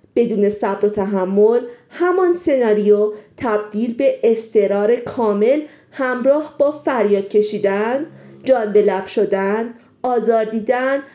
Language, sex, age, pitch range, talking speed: Persian, female, 40-59, 205-260 Hz, 100 wpm